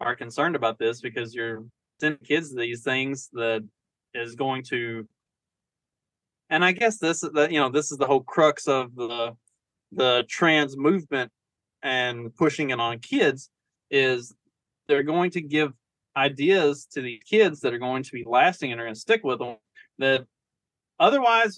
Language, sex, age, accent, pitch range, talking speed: English, male, 20-39, American, 115-150 Hz, 165 wpm